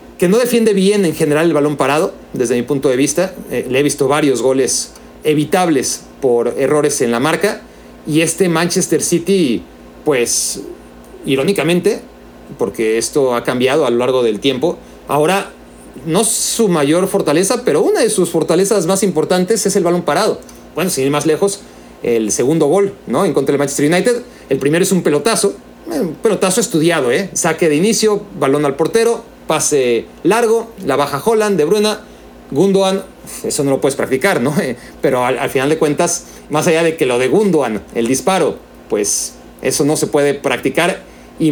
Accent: Mexican